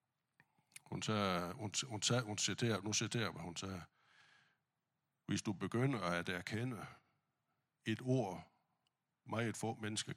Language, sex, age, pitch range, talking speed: Danish, male, 60-79, 95-125 Hz, 130 wpm